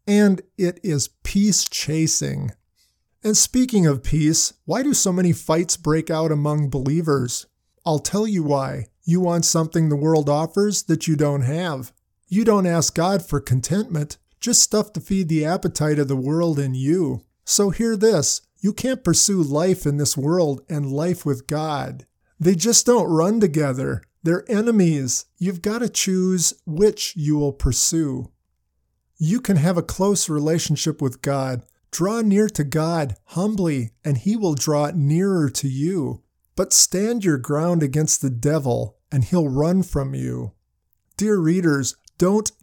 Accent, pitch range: American, 145-185 Hz